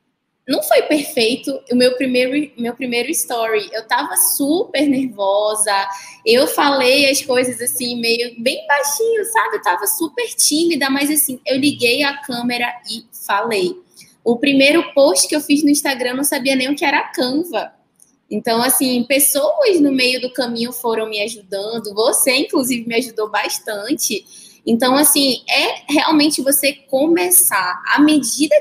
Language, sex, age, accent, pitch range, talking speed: Portuguese, female, 10-29, Brazilian, 235-295 Hz, 155 wpm